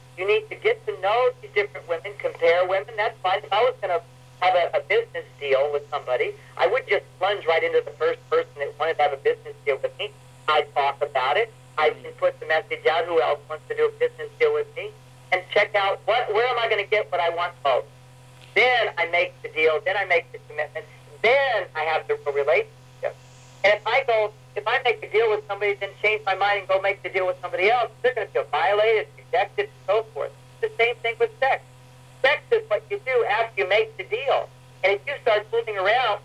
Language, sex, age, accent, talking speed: English, male, 50-69, American, 235 wpm